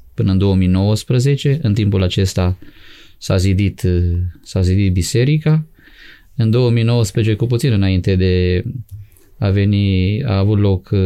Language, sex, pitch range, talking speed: Romanian, male, 95-110 Hz, 120 wpm